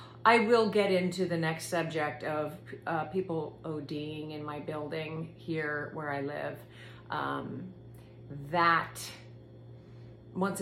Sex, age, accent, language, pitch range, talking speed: female, 40-59, American, English, 130-180 Hz, 120 wpm